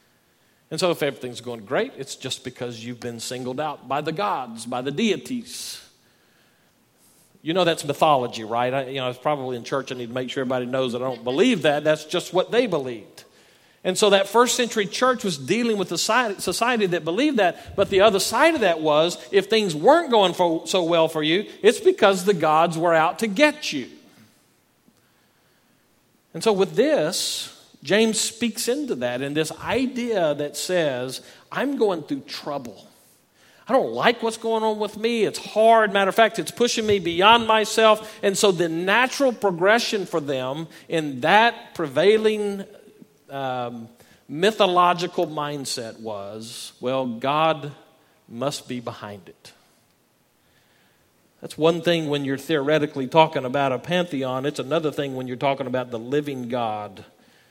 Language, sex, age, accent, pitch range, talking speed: English, male, 50-69, American, 135-215 Hz, 170 wpm